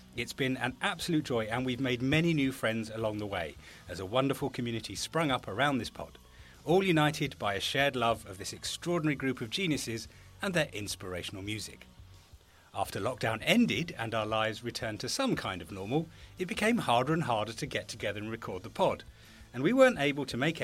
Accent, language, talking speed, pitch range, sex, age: British, English, 200 wpm, 105-150 Hz, male, 40-59